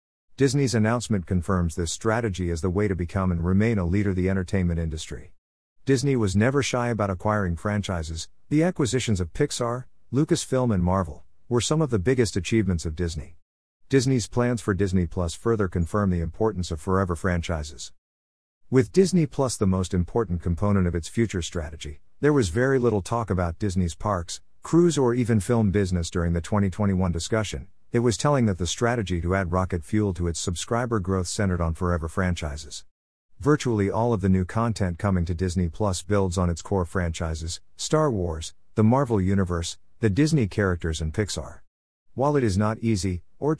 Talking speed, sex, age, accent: 175 wpm, male, 50-69, American